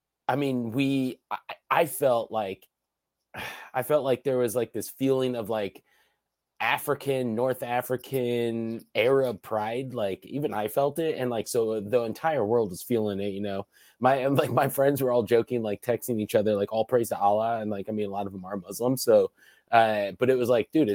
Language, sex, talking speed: English, male, 205 wpm